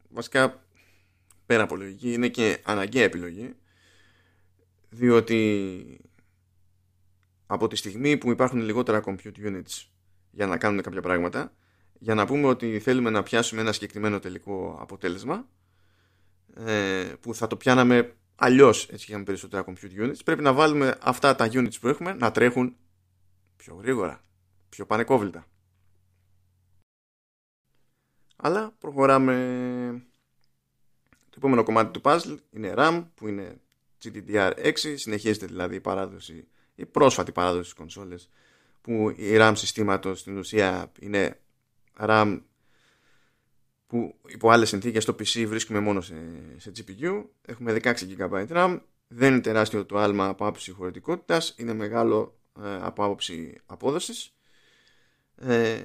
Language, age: Greek, 20-39